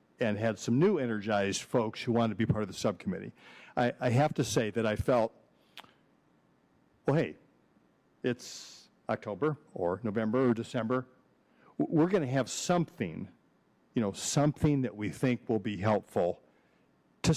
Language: English